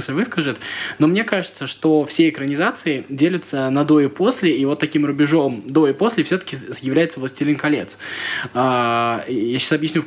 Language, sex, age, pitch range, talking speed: Russian, male, 20-39, 125-160 Hz, 160 wpm